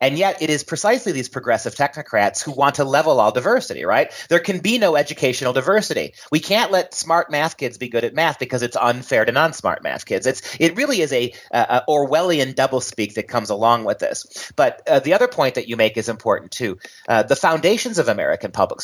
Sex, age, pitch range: male, 30-49, 120-170 Hz